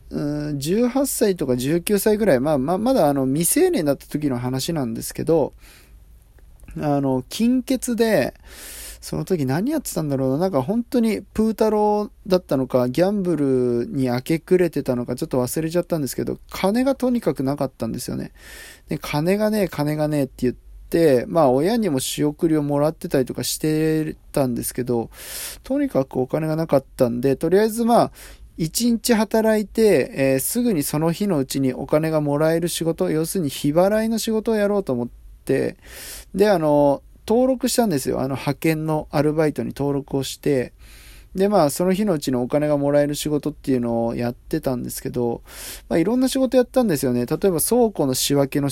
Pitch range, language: 135-205 Hz, Japanese